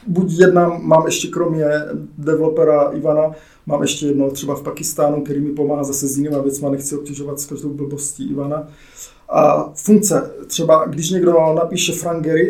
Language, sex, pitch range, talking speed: English, male, 145-175 Hz, 165 wpm